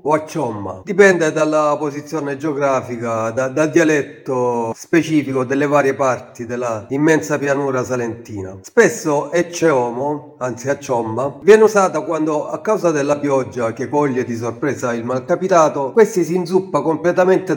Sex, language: male, Italian